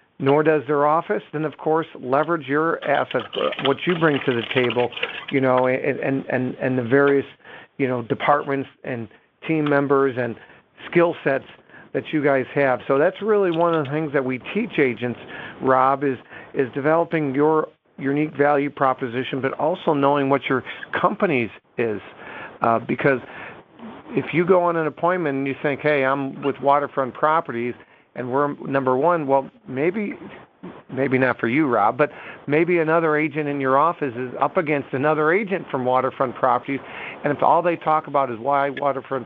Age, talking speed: 50-69, 170 wpm